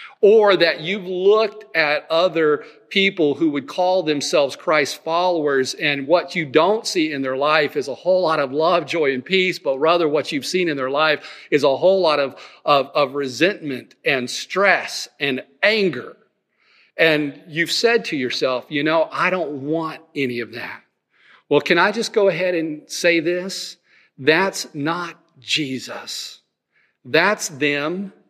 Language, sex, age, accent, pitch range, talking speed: English, male, 40-59, American, 145-185 Hz, 165 wpm